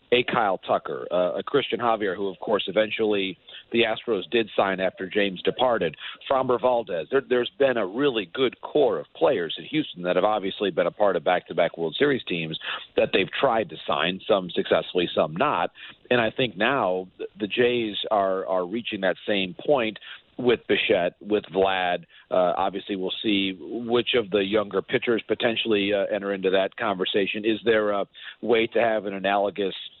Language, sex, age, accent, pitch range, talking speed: English, male, 50-69, American, 95-125 Hz, 180 wpm